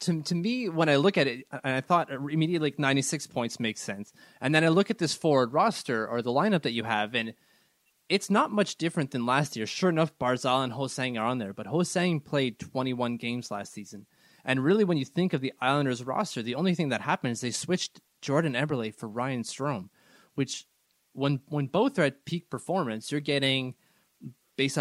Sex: male